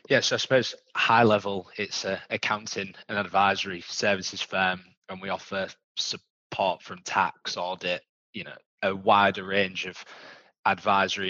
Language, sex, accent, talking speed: English, male, British, 150 wpm